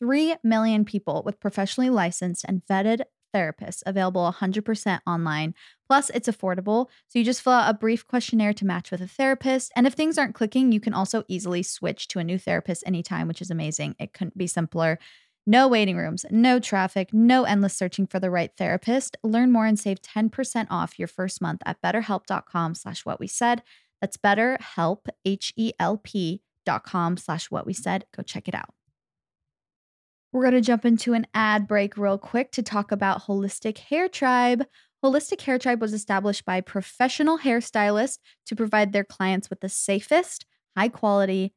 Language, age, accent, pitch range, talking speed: English, 20-39, American, 190-235 Hz, 175 wpm